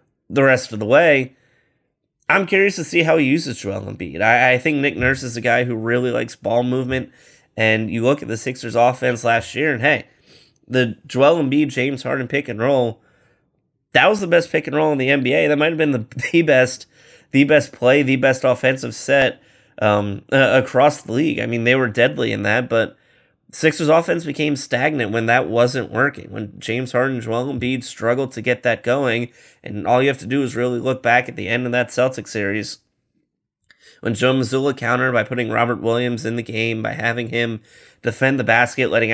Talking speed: 210 wpm